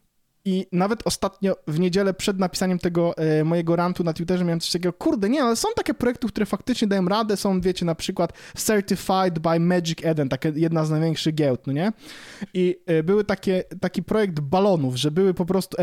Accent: native